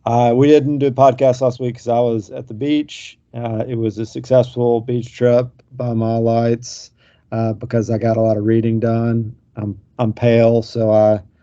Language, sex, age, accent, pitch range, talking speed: English, male, 40-59, American, 110-120 Hz, 200 wpm